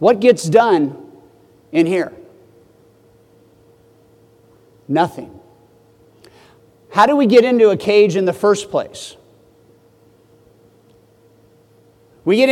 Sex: male